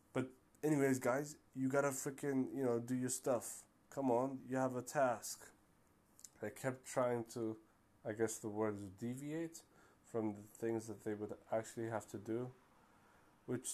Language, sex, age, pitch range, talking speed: English, male, 20-39, 105-130 Hz, 155 wpm